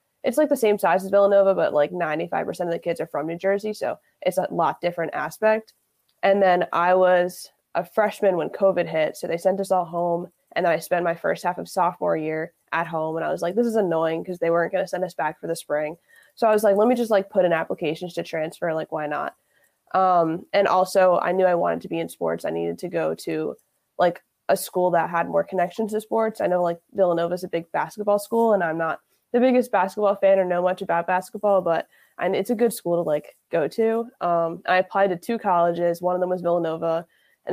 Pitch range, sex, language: 170-200 Hz, female, English